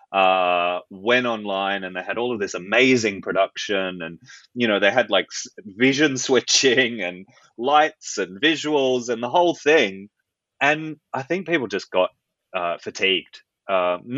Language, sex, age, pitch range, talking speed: English, male, 30-49, 95-135 Hz, 150 wpm